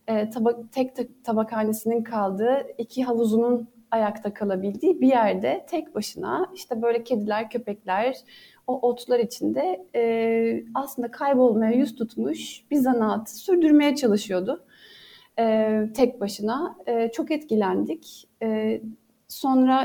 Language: Turkish